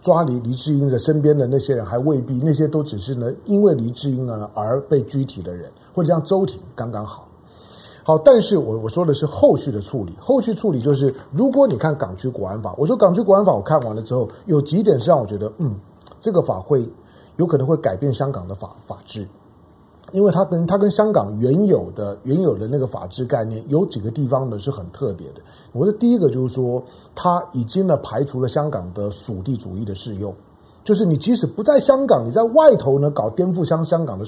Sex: male